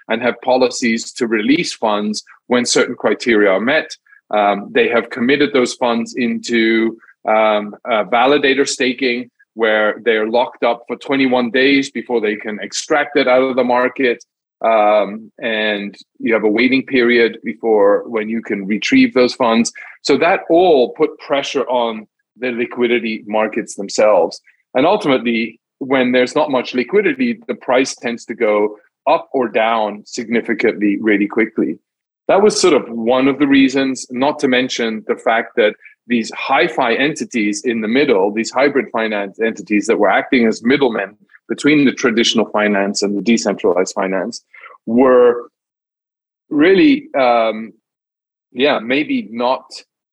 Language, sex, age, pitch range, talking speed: English, male, 30-49, 110-130 Hz, 145 wpm